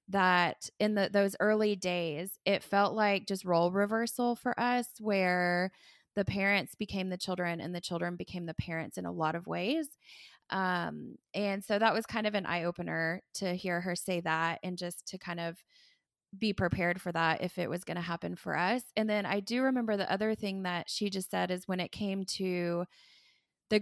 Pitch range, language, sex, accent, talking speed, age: 175-210 Hz, English, female, American, 205 wpm, 20-39